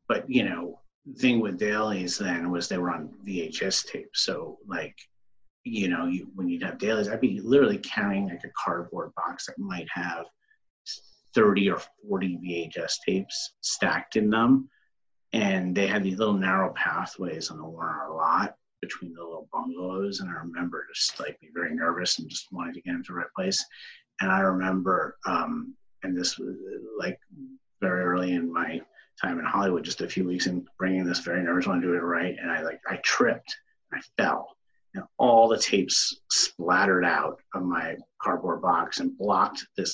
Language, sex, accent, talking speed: English, male, American, 185 wpm